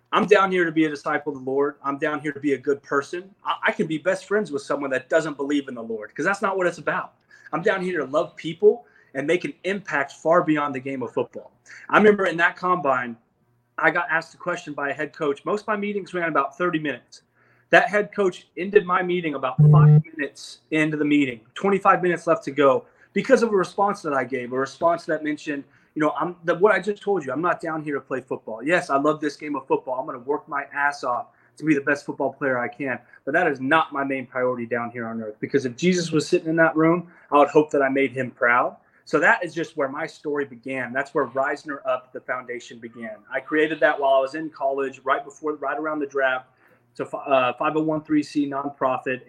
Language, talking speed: English, 245 wpm